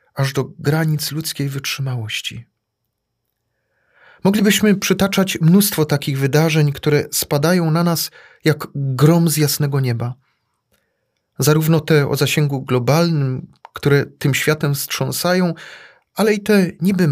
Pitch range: 135-175 Hz